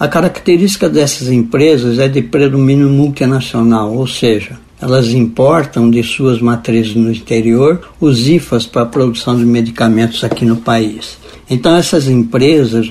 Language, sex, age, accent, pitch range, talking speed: Portuguese, male, 60-79, Brazilian, 120-155 Hz, 140 wpm